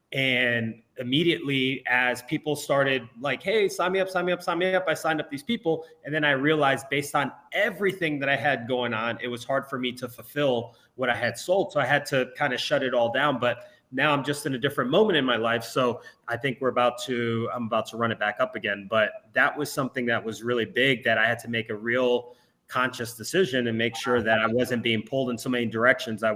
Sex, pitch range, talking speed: male, 120-145 Hz, 250 wpm